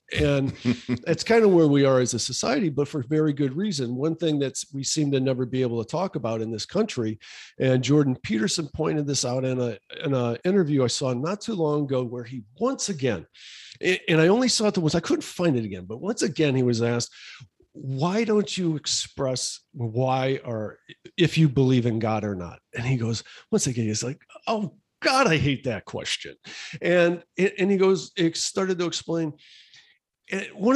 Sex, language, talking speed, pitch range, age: male, English, 205 wpm, 125-170 Hz, 50-69